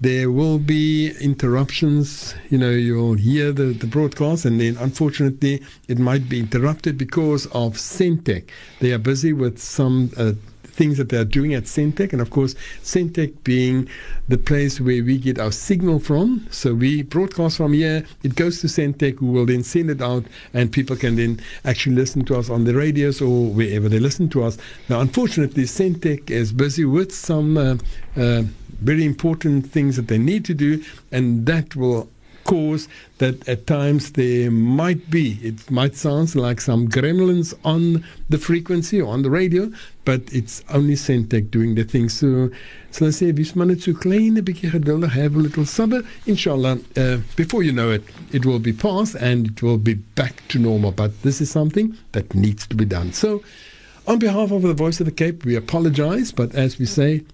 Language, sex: English, male